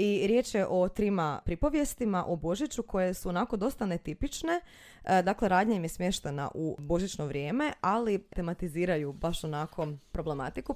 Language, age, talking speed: Croatian, 20-39, 150 wpm